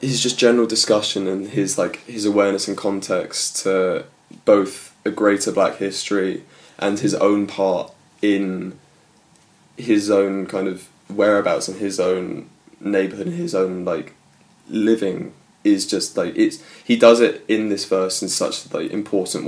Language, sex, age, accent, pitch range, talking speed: English, male, 20-39, British, 90-105 Hz, 155 wpm